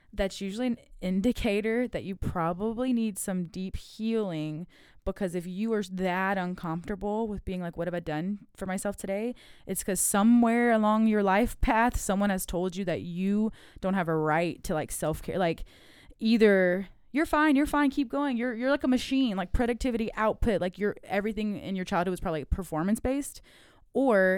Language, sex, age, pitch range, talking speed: English, female, 20-39, 175-220 Hz, 185 wpm